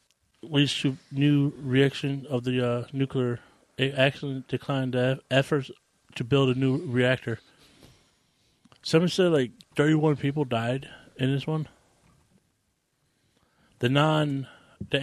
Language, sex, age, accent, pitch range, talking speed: English, male, 30-49, American, 130-145 Hz, 120 wpm